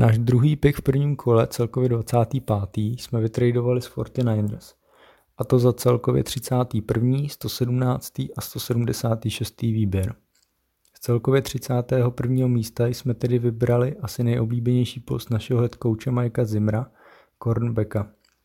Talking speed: 120 wpm